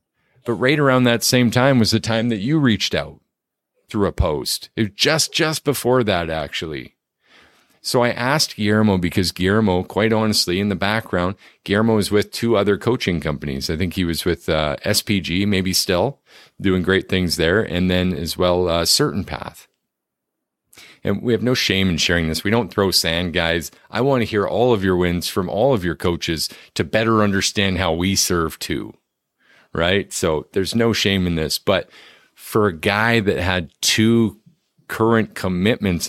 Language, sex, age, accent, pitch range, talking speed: English, male, 40-59, American, 90-115 Hz, 185 wpm